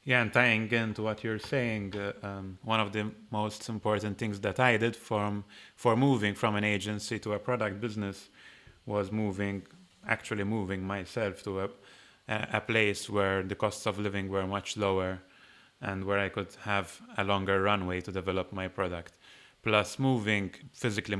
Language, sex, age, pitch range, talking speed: English, male, 20-39, 95-105 Hz, 170 wpm